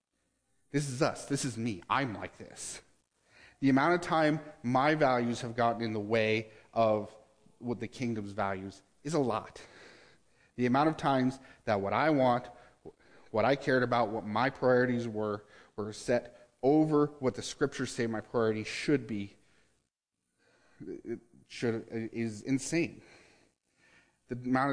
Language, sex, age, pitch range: English, male, 30-49, 105-135 Hz